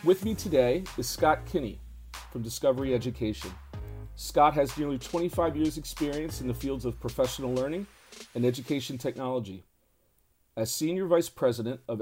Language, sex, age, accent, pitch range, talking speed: English, male, 40-59, American, 110-145 Hz, 145 wpm